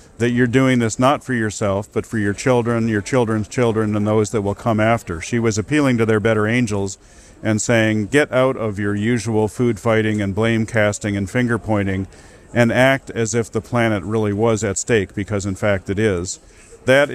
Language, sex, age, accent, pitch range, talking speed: English, male, 50-69, American, 105-120 Hz, 205 wpm